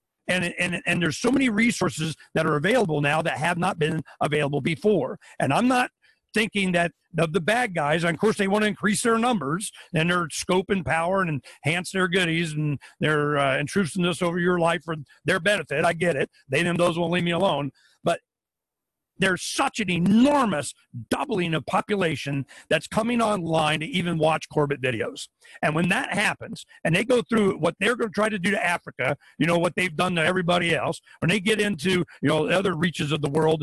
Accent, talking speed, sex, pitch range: American, 205 wpm, male, 160-225 Hz